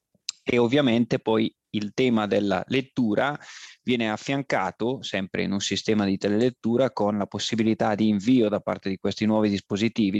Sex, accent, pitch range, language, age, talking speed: male, native, 100-115 Hz, Italian, 30-49, 155 wpm